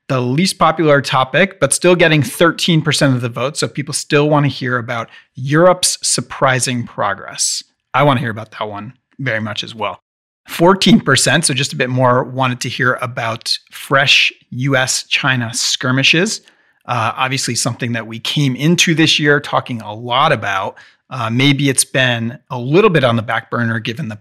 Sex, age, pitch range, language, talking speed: male, 40-59, 120-150 Hz, English, 175 wpm